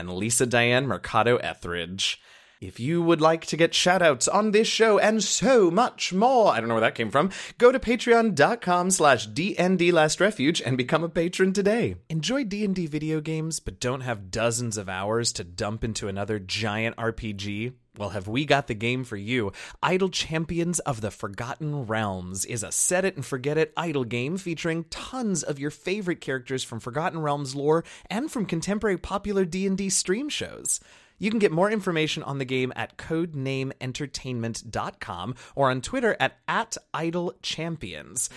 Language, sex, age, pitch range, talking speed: English, male, 30-49, 120-190 Hz, 165 wpm